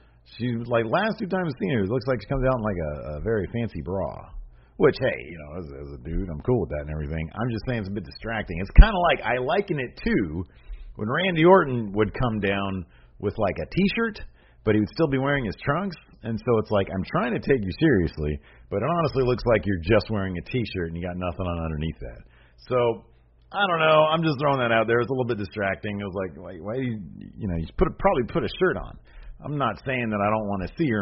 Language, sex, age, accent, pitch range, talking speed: English, male, 40-59, American, 90-125 Hz, 265 wpm